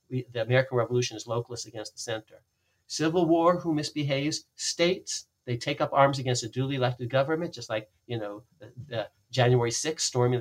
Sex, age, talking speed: male, 50-69, 180 wpm